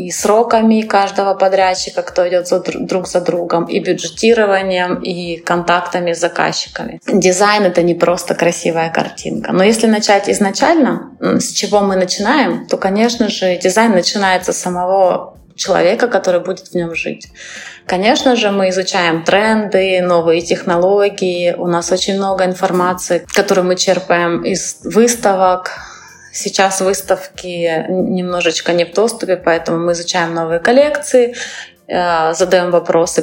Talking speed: 130 wpm